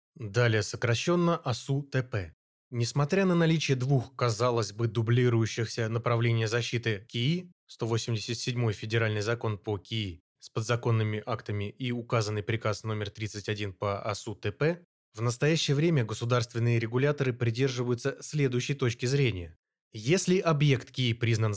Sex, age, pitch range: male, 20-39, 110-135 Hz